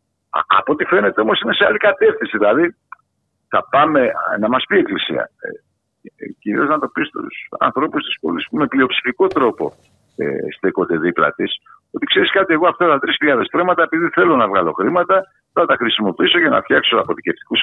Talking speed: 185 wpm